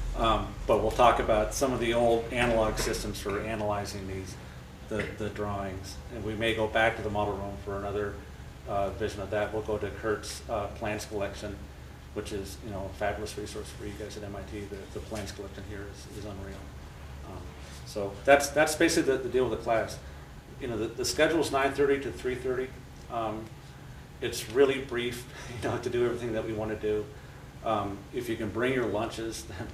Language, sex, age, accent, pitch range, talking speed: English, male, 40-59, American, 100-115 Hz, 210 wpm